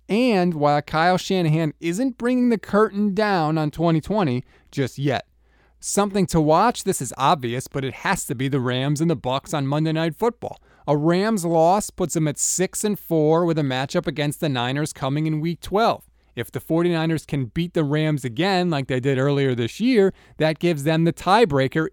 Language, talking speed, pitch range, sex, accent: English, 195 wpm, 135-175 Hz, male, American